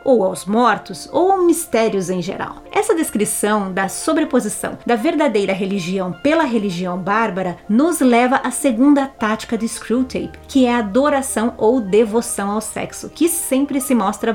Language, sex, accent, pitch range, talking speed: Portuguese, female, Brazilian, 210-280 Hz, 150 wpm